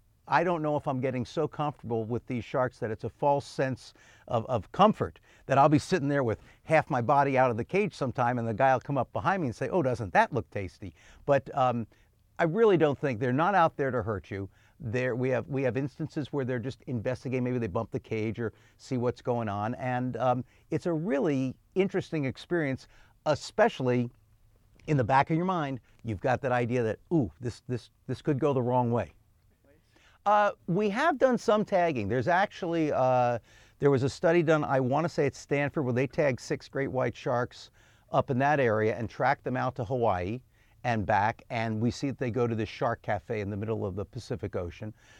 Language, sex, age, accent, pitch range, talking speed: English, male, 50-69, American, 110-145 Hz, 220 wpm